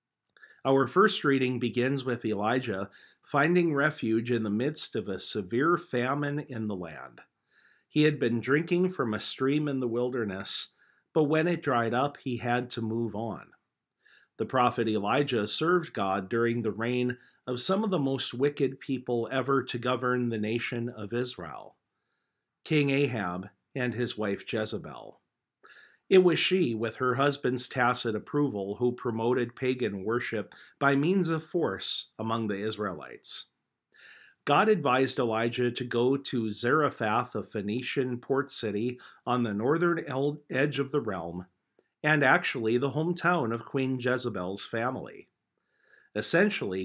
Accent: American